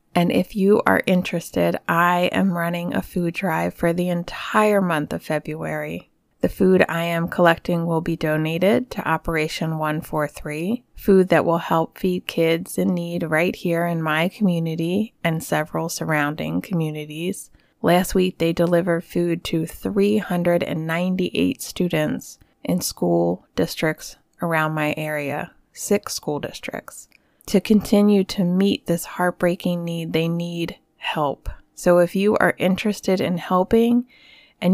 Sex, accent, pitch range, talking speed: female, American, 160-190 Hz, 140 wpm